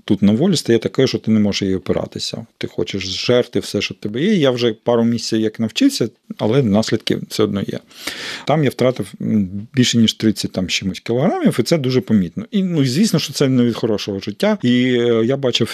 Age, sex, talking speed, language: 40-59, male, 205 wpm, Ukrainian